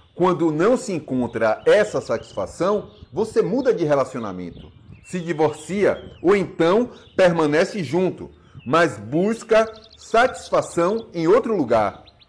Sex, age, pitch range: male, 40-59, 125-190 Hz